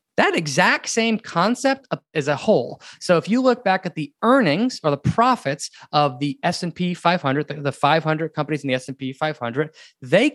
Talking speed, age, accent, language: 175 wpm, 20-39, American, English